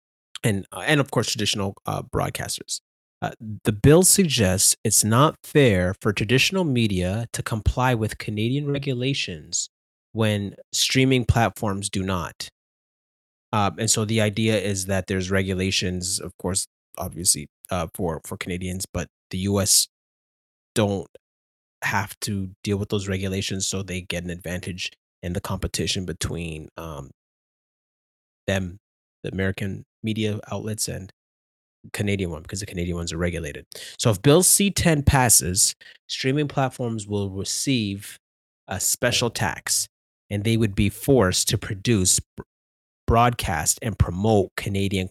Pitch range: 90-115 Hz